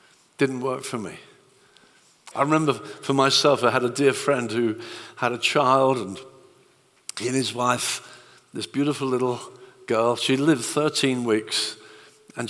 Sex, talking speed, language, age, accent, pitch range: male, 140 wpm, English, 50-69, British, 125-175 Hz